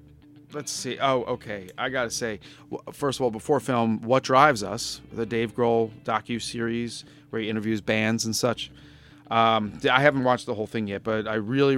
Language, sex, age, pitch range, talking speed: English, male, 30-49, 110-140 Hz, 190 wpm